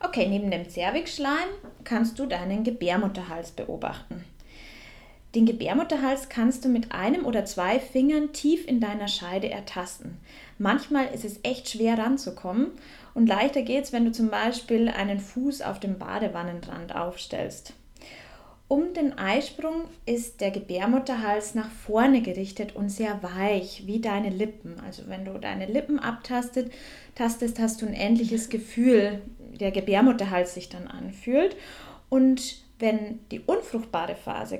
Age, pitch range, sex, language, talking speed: 20-39, 195-255 Hz, female, German, 135 wpm